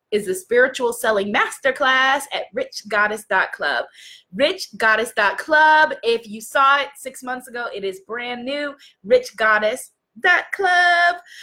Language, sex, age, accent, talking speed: English, female, 20-39, American, 105 wpm